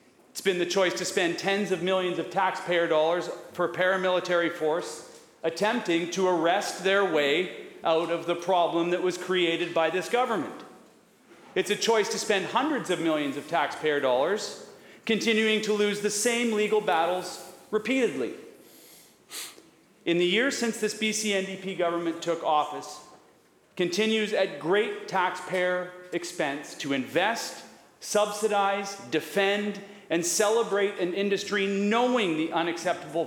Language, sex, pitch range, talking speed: English, male, 170-215 Hz, 135 wpm